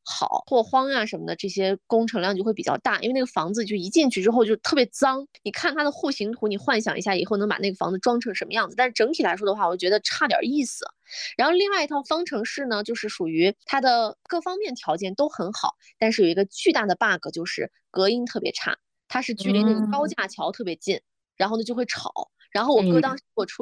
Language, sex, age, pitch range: Chinese, female, 20-39, 200-270 Hz